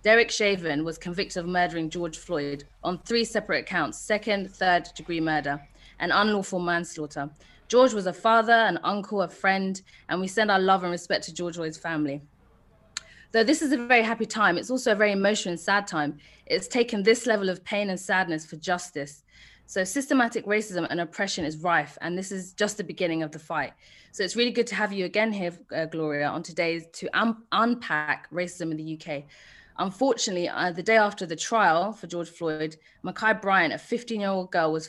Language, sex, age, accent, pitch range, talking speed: English, female, 20-39, British, 160-210 Hz, 200 wpm